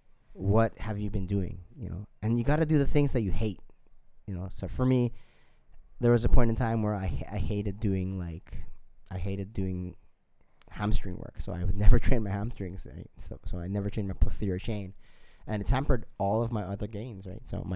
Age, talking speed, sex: 20-39, 225 wpm, male